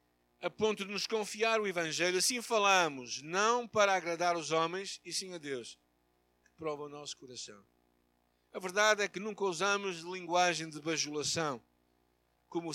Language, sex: Portuguese, male